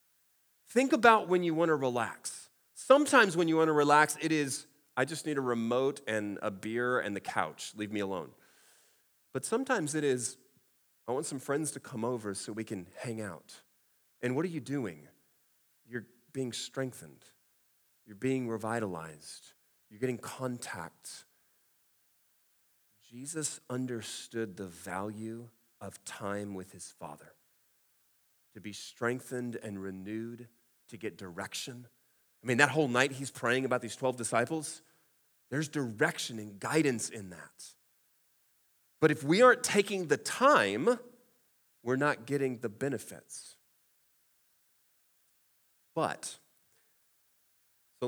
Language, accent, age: English, American, 30-49